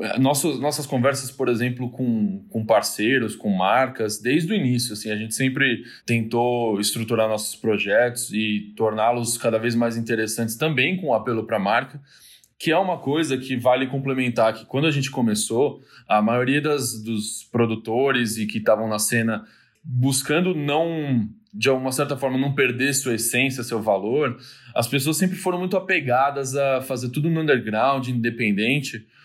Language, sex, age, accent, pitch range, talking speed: Portuguese, male, 20-39, Brazilian, 115-150 Hz, 155 wpm